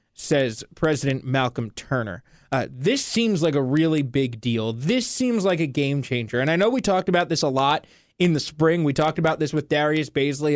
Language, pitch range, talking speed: English, 135-175 Hz, 210 wpm